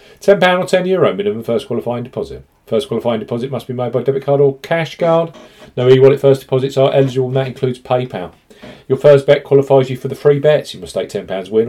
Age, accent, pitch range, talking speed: 40-59, British, 120-160 Hz, 220 wpm